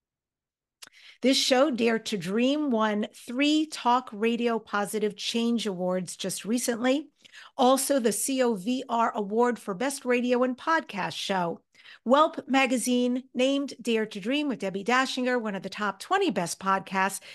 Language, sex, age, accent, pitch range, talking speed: English, female, 50-69, American, 210-270 Hz, 140 wpm